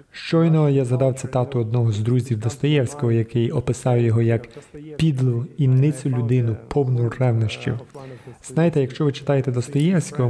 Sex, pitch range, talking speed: male, 120-145 Hz, 130 wpm